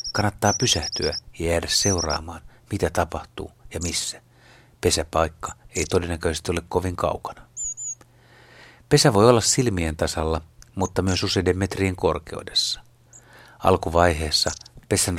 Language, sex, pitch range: Finnish, male, 85-110 Hz